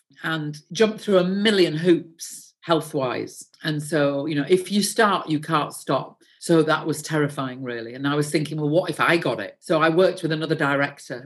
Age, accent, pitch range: 50-69, British, 140-170 Hz